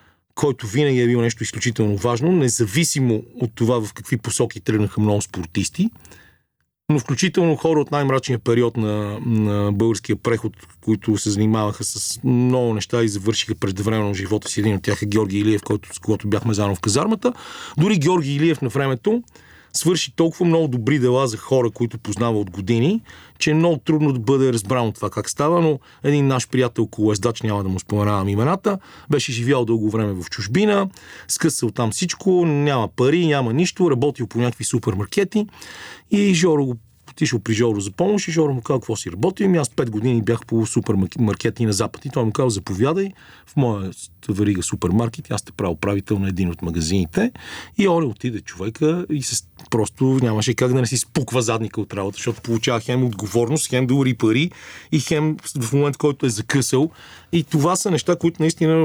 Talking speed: 185 wpm